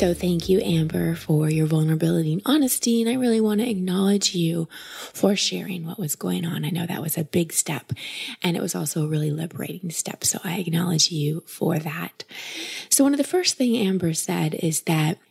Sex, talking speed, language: female, 210 wpm, English